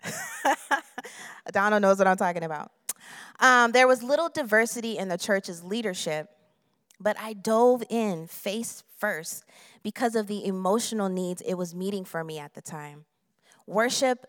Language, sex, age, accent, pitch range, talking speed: English, female, 20-39, American, 175-230 Hz, 145 wpm